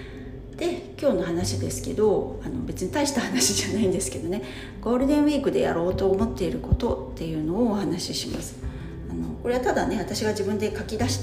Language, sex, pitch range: Japanese, female, 130-205 Hz